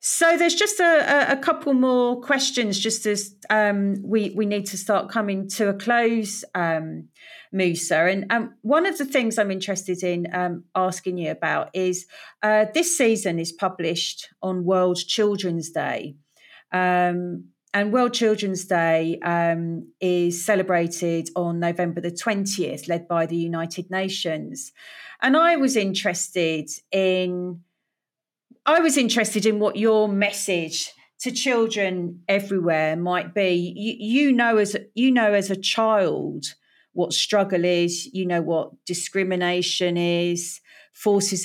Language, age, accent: English, 40-59, British